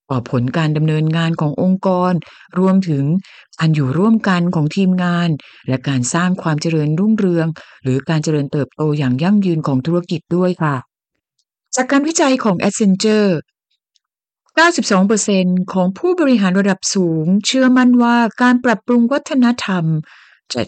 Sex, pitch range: female, 150-205 Hz